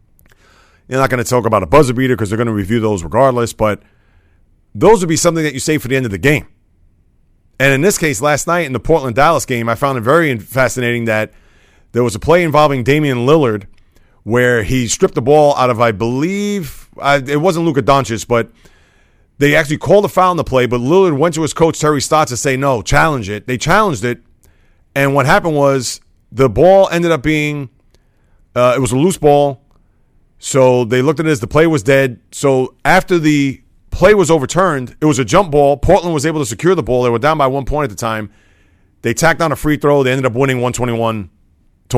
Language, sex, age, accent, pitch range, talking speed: English, male, 30-49, American, 110-150 Hz, 225 wpm